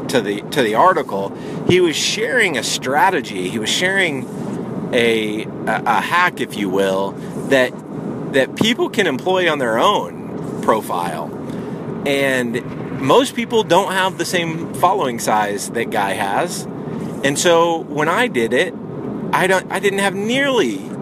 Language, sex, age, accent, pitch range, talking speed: English, male, 30-49, American, 145-210 Hz, 150 wpm